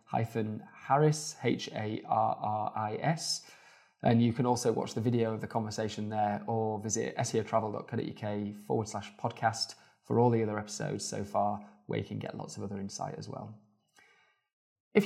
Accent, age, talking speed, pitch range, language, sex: British, 20-39, 150 wpm, 105-125 Hz, English, male